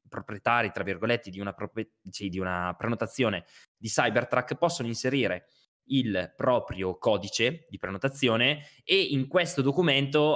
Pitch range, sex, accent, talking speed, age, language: 110-145 Hz, male, native, 115 wpm, 20-39, Italian